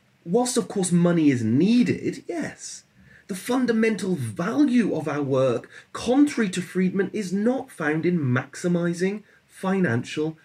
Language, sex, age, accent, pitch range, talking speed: English, male, 30-49, British, 135-185 Hz, 125 wpm